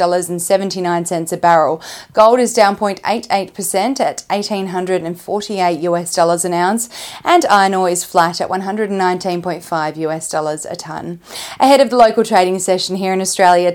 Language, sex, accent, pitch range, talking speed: English, female, Australian, 180-220 Hz, 150 wpm